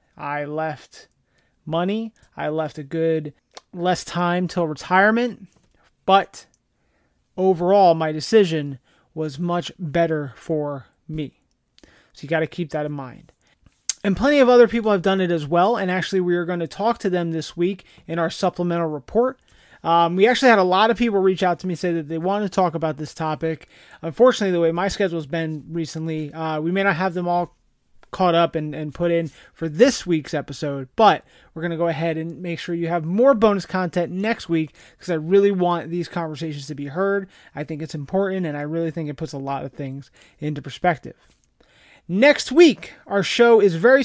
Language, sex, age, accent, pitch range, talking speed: English, male, 30-49, American, 160-195 Hz, 200 wpm